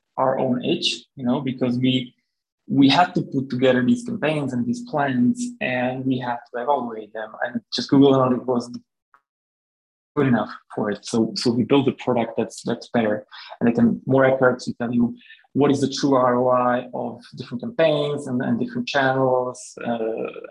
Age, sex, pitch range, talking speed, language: 20-39, male, 120-150 Hz, 180 wpm, English